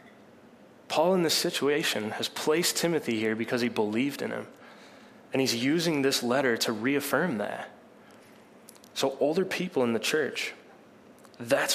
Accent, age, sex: American, 20-39, male